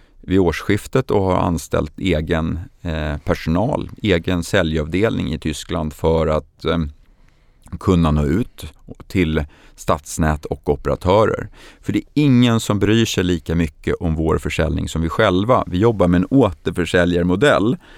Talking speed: 135 wpm